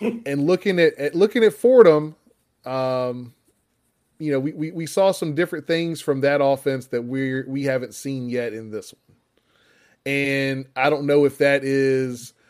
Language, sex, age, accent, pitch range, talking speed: English, male, 20-39, American, 125-145 Hz, 175 wpm